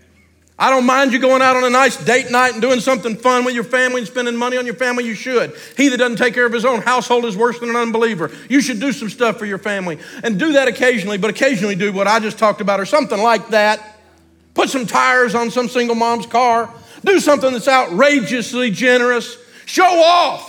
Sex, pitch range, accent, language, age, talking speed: male, 185-260 Hz, American, English, 50-69, 230 wpm